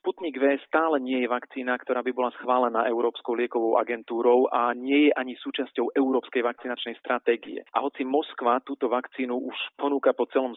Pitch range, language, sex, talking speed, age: 120-130 Hz, Slovak, male, 170 wpm, 40-59